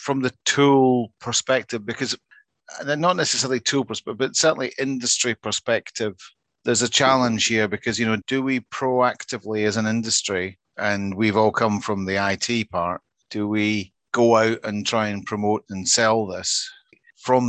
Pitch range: 100-120 Hz